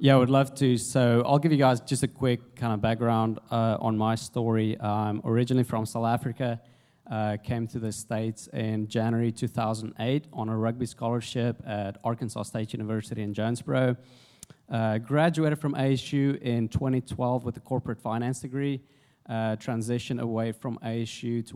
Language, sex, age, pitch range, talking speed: English, male, 20-39, 110-130 Hz, 165 wpm